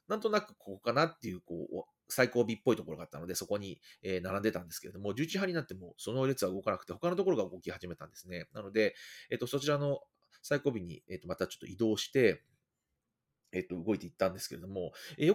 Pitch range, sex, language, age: 90-145 Hz, male, Japanese, 30-49